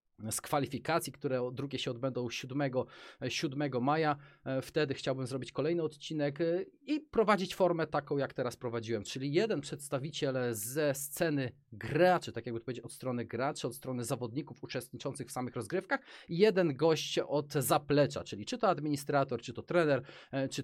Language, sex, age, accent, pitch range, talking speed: Polish, male, 30-49, native, 120-150 Hz, 155 wpm